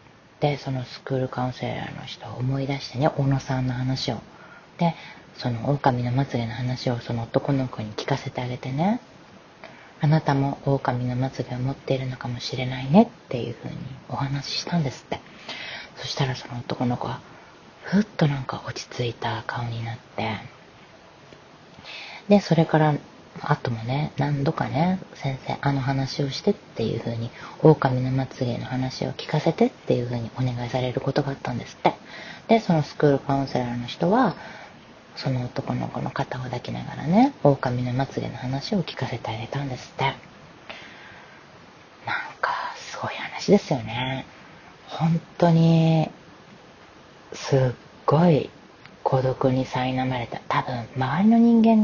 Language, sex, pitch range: Japanese, female, 125-160 Hz